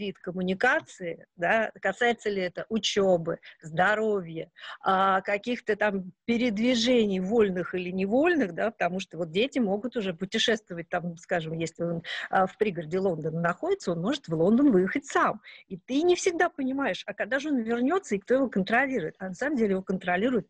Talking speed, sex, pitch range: 165 wpm, female, 175-230 Hz